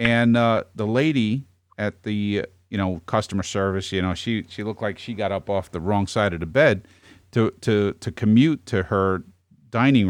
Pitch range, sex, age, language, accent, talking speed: 95-130 Hz, male, 40-59, English, American, 195 wpm